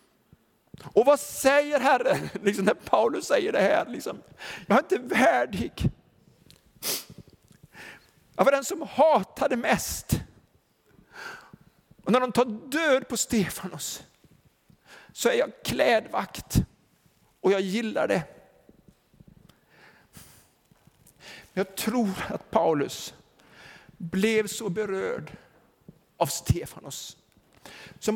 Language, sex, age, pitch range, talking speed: Swedish, male, 50-69, 190-235 Hz, 100 wpm